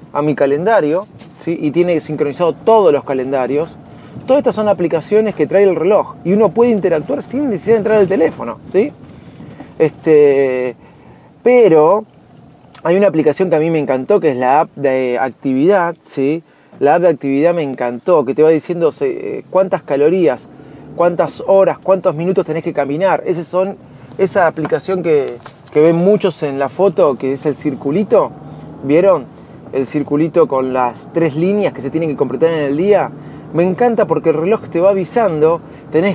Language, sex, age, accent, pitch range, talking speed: Spanish, male, 20-39, Argentinian, 145-190 Hz, 175 wpm